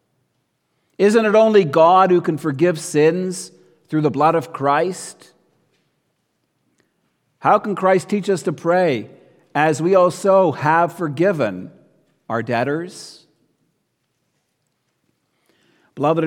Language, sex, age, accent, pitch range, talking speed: English, male, 50-69, American, 145-185 Hz, 105 wpm